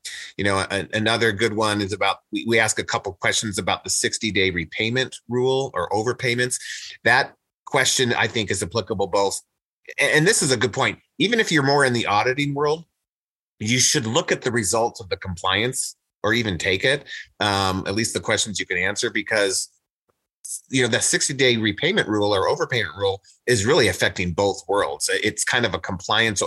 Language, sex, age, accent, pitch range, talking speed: English, male, 30-49, American, 95-115 Hz, 190 wpm